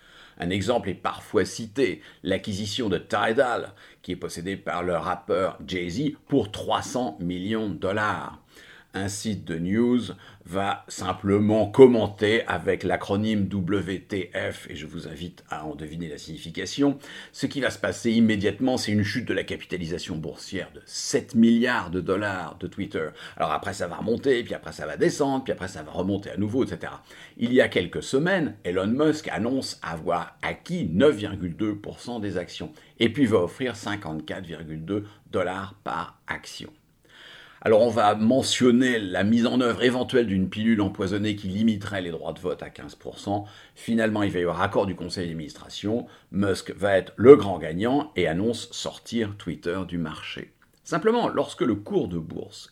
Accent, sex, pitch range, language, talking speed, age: French, male, 90-115 Hz, English, 165 wpm, 50-69